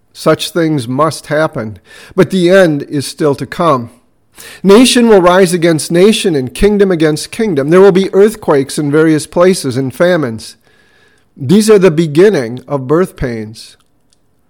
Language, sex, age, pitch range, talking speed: English, male, 50-69, 135-180 Hz, 150 wpm